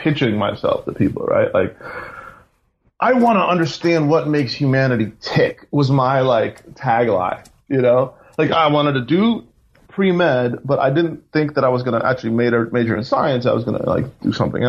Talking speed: 190 wpm